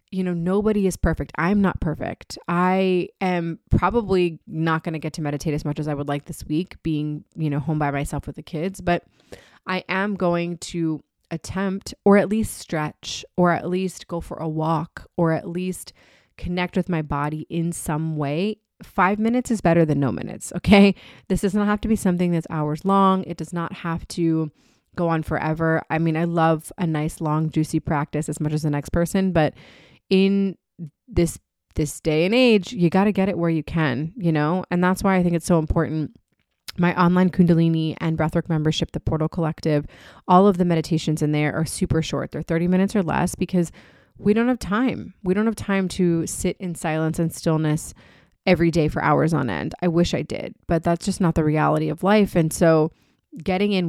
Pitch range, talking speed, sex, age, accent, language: 155-185 Hz, 210 wpm, female, 20-39, American, English